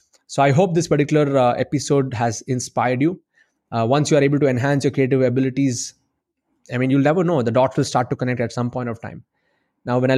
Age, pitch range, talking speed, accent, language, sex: 20-39, 125-145 Hz, 230 wpm, Indian, English, male